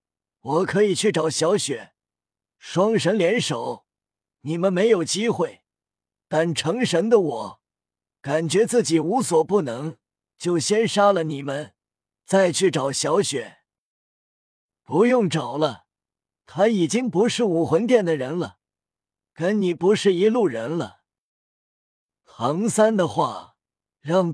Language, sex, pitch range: Chinese, male, 155-215 Hz